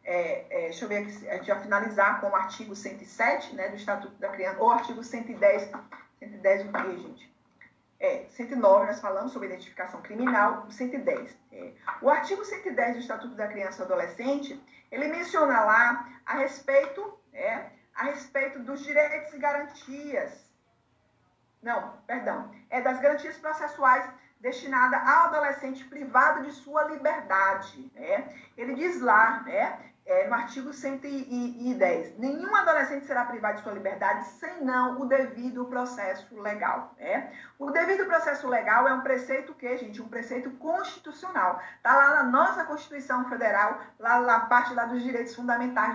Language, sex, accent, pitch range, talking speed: Portuguese, female, Brazilian, 225-285 Hz, 155 wpm